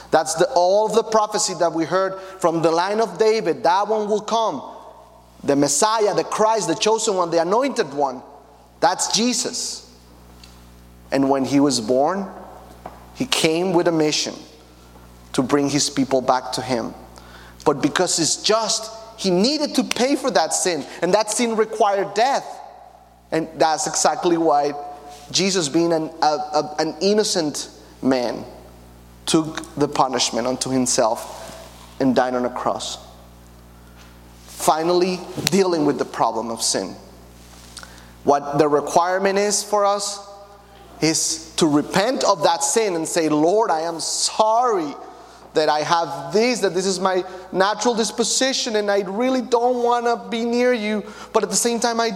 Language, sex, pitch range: English, male, 135-215 Hz